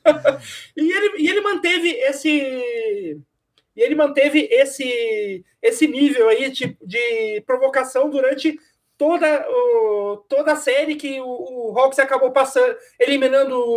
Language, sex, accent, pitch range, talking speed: Portuguese, male, Brazilian, 260-330 Hz, 120 wpm